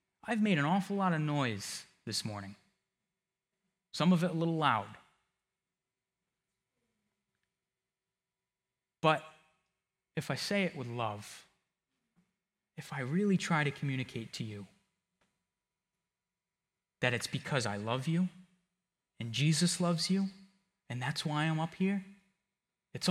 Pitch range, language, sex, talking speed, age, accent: 130-185 Hz, English, male, 120 wpm, 30-49, American